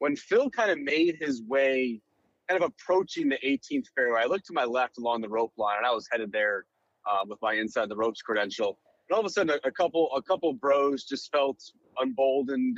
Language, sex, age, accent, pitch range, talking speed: English, male, 30-49, American, 115-160 Hz, 230 wpm